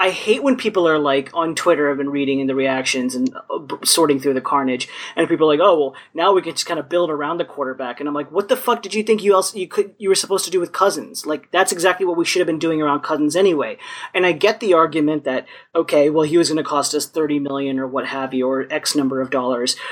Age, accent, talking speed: 30-49, American, 270 wpm